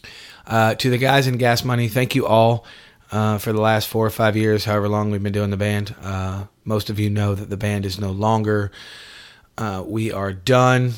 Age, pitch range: 30-49, 100-110 Hz